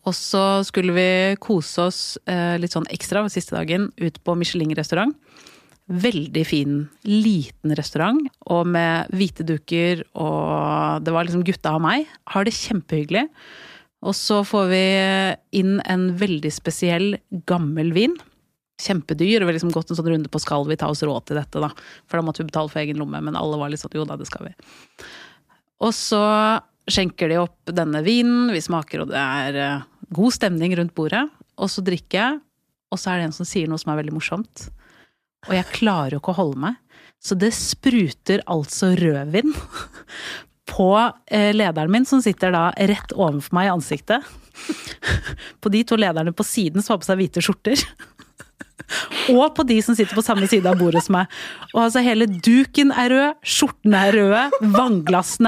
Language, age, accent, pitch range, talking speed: English, 30-49, Swedish, 165-230 Hz, 180 wpm